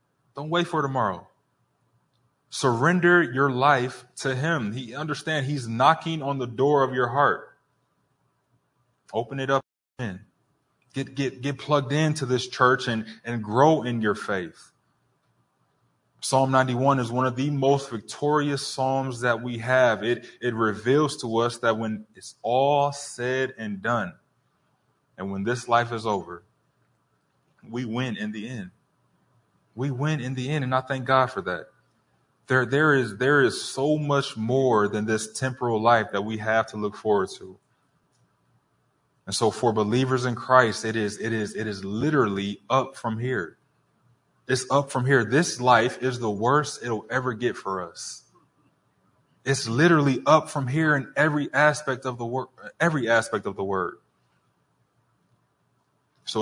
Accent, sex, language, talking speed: American, male, English, 155 wpm